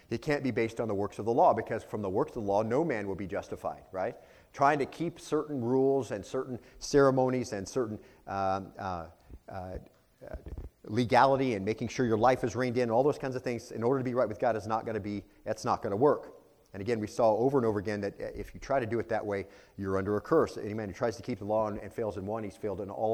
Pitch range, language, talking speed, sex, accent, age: 105-130 Hz, English, 260 wpm, male, American, 40-59